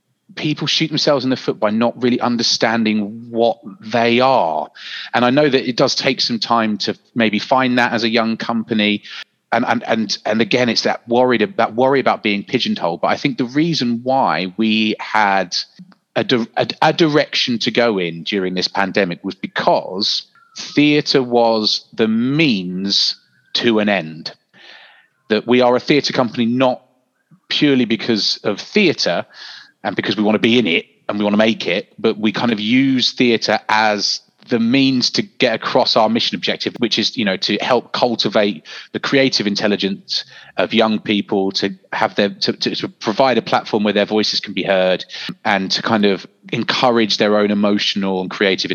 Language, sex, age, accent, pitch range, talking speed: English, male, 30-49, British, 105-130 Hz, 180 wpm